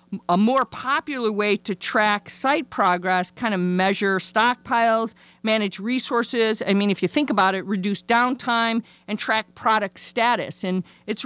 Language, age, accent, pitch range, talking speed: English, 50-69, American, 175-225 Hz, 155 wpm